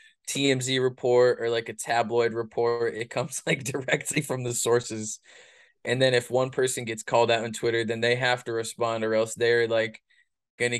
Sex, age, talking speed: male, 20-39, 190 wpm